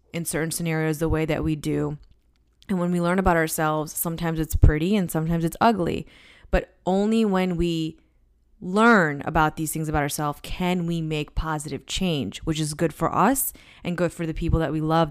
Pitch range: 155-180 Hz